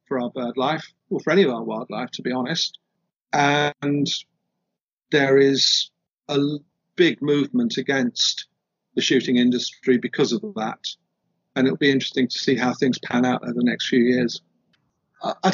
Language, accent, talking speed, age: English, British, 160 wpm, 50-69